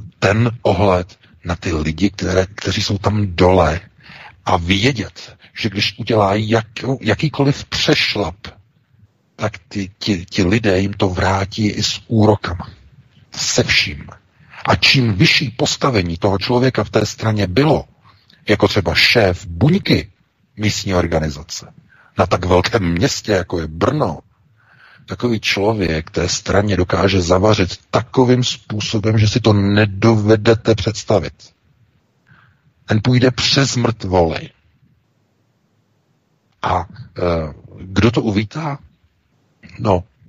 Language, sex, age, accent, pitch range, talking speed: Czech, male, 50-69, native, 95-125 Hz, 110 wpm